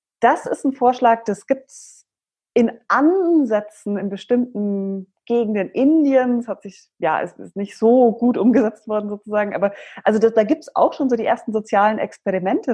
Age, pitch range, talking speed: 30-49, 190-230 Hz, 165 wpm